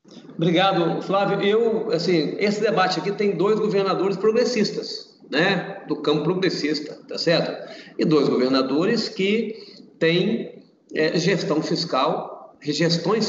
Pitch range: 165-220 Hz